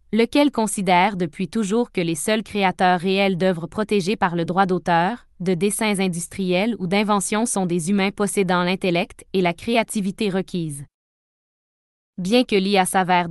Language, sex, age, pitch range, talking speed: French, female, 20-39, 185-215 Hz, 150 wpm